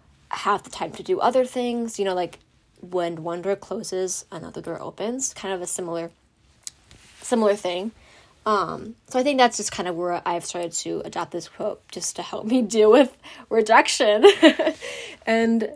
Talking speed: 175 wpm